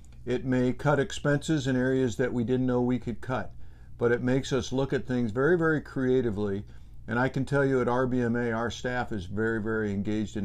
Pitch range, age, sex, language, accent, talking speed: 105-140 Hz, 50-69, male, English, American, 215 wpm